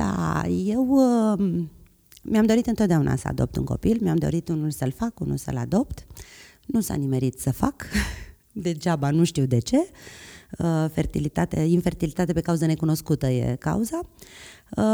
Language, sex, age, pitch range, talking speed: Romanian, female, 30-49, 135-180 Hz, 135 wpm